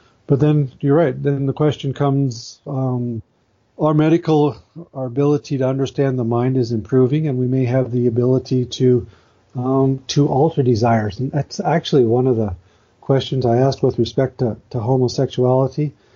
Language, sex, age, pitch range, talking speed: English, male, 40-59, 115-135 Hz, 165 wpm